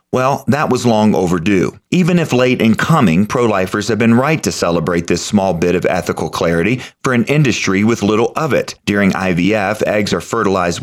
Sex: male